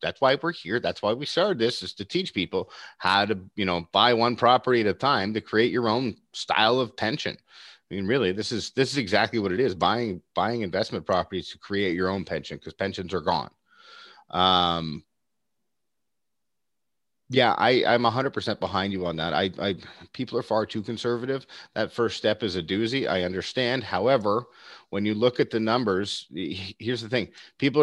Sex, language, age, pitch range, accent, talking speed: male, English, 30-49, 95-125 Hz, American, 195 wpm